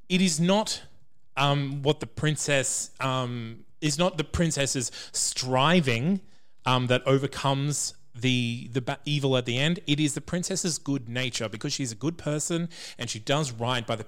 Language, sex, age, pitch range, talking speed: English, male, 30-49, 120-170 Hz, 165 wpm